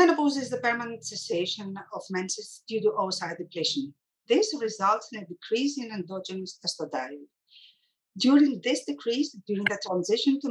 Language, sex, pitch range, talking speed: English, female, 175-250 Hz, 150 wpm